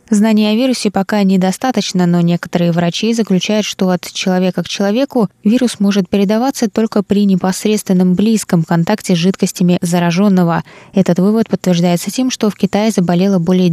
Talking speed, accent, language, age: 150 wpm, native, Russian, 20-39